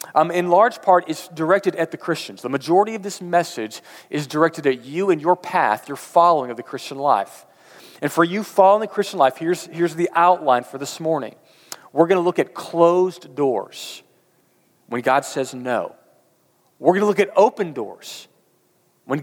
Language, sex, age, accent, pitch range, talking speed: English, male, 40-59, American, 135-180 Hz, 185 wpm